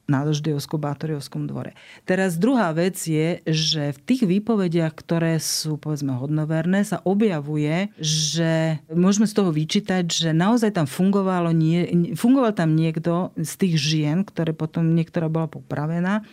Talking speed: 140 wpm